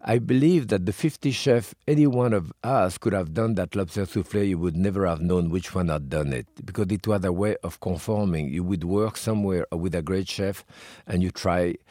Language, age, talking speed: English, 50-69, 220 wpm